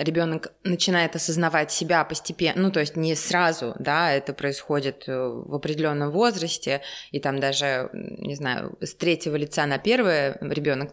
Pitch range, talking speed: 140-170 Hz, 150 wpm